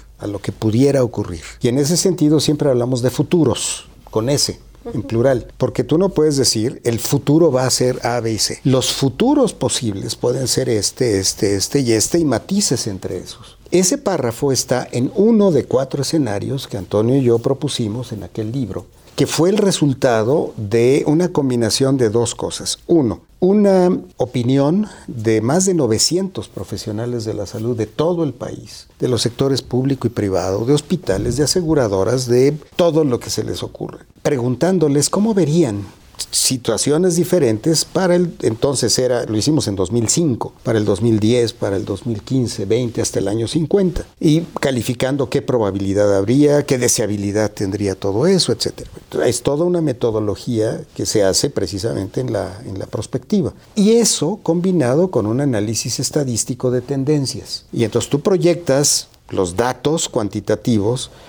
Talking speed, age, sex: 165 wpm, 50-69, male